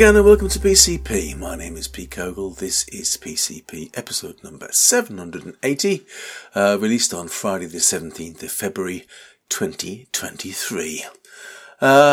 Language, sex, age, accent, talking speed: English, male, 40-59, British, 120 wpm